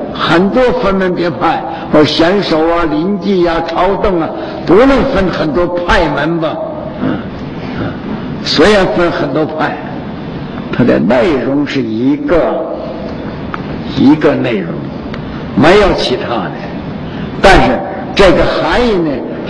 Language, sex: Chinese, male